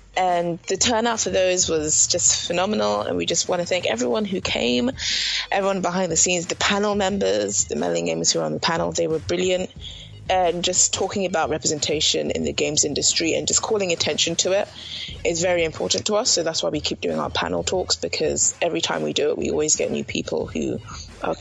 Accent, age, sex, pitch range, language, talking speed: British, 20-39, female, 150-185 Hz, English, 215 wpm